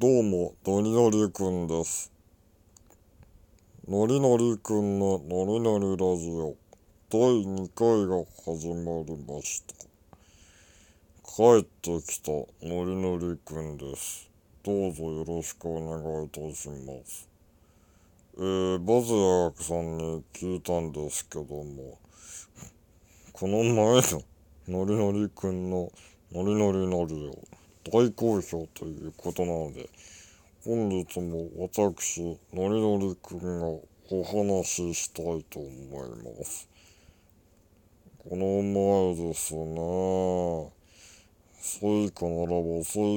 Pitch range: 85-100 Hz